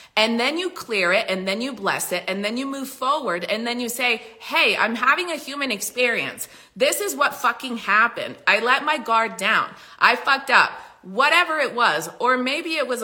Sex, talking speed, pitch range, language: female, 205 wpm, 180-250 Hz, English